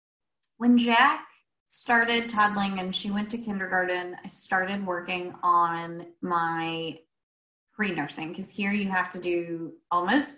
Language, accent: English, American